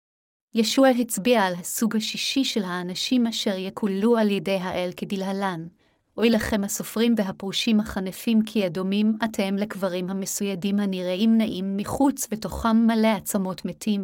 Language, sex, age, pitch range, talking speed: Hebrew, female, 30-49, 195-225 Hz, 130 wpm